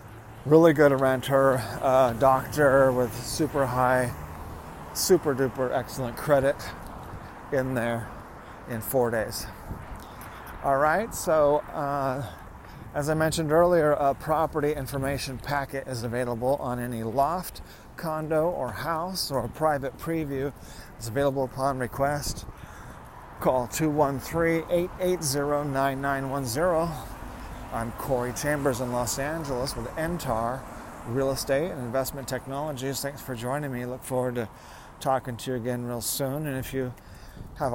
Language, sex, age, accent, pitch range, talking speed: English, male, 40-59, American, 120-145 Hz, 120 wpm